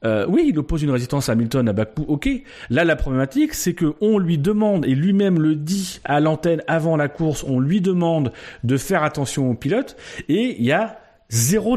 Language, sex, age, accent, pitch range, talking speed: French, male, 40-59, French, 135-180 Hz, 210 wpm